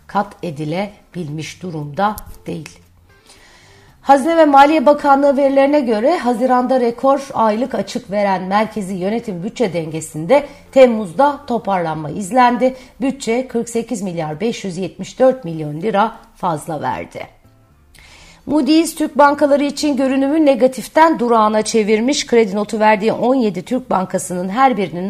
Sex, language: female, Turkish